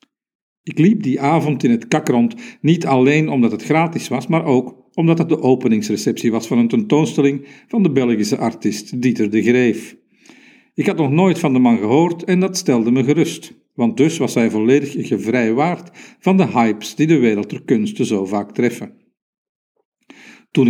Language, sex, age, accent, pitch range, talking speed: Dutch, male, 50-69, Belgian, 115-160 Hz, 175 wpm